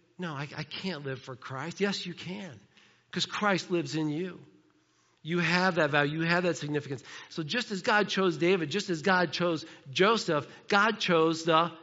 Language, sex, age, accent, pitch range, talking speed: English, male, 50-69, American, 140-175 Hz, 190 wpm